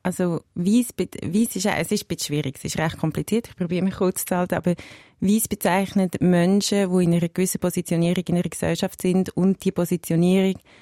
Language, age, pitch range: German, 30-49, 170-190 Hz